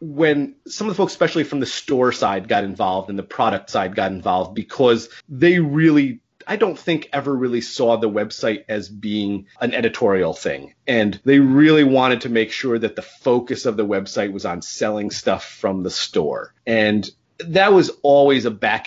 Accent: American